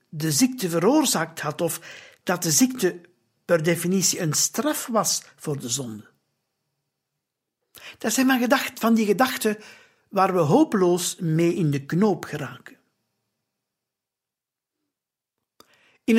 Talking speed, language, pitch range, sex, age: 115 wpm, Dutch, 170-235 Hz, male, 60-79